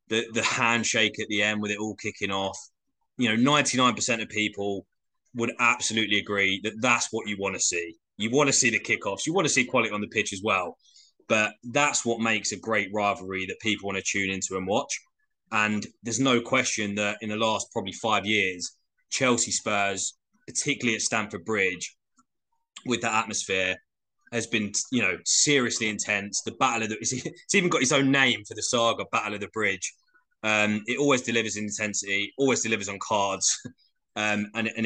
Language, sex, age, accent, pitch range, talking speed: English, male, 20-39, British, 100-120 Hz, 195 wpm